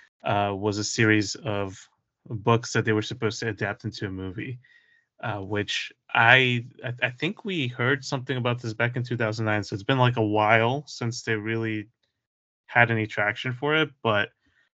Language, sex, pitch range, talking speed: English, male, 110-130 Hz, 175 wpm